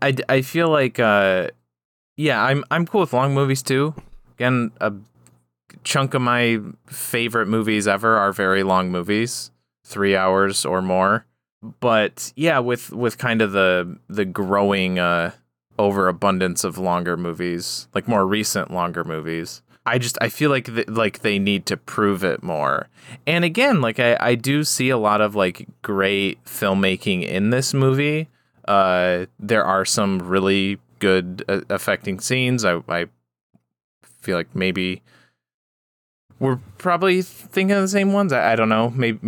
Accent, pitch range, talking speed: American, 95-130 Hz, 155 wpm